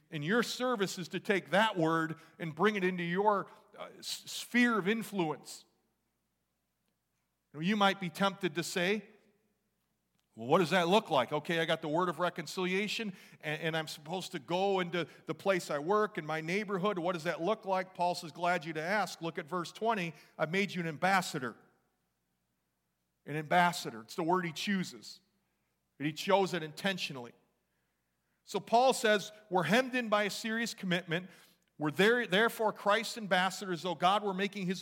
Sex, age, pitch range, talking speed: male, 40-59, 160-200 Hz, 170 wpm